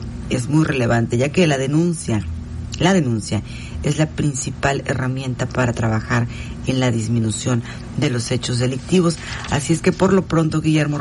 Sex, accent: female, Mexican